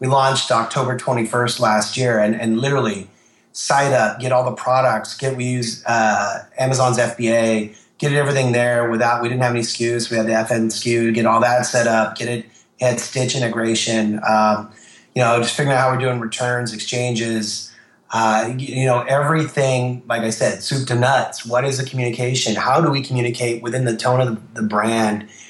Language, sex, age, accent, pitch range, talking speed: English, male, 30-49, American, 115-135 Hz, 190 wpm